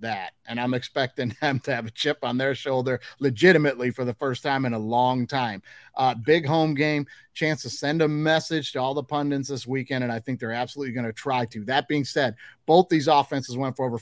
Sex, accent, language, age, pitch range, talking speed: male, American, English, 30-49, 125-160 Hz, 230 wpm